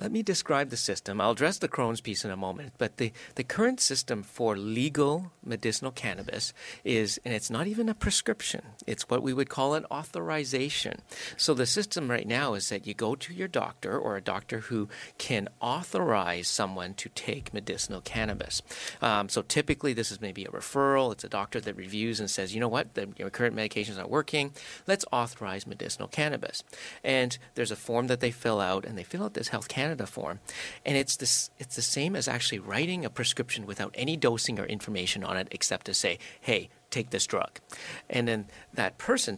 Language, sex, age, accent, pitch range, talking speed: English, male, 40-59, American, 105-140 Hz, 205 wpm